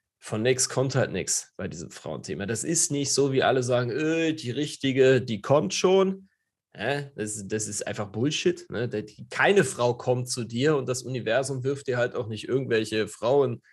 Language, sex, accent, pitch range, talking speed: German, male, German, 115-140 Hz, 185 wpm